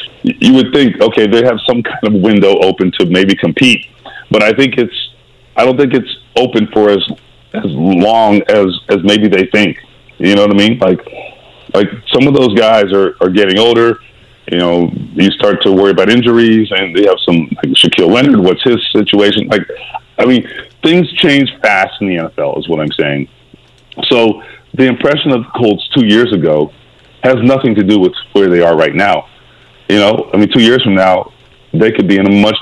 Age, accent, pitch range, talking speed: 40-59, American, 95-120 Hz, 205 wpm